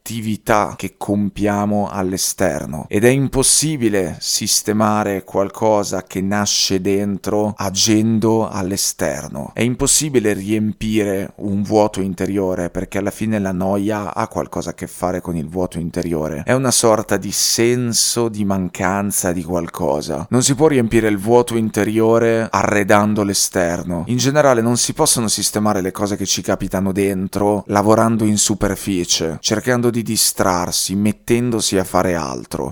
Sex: male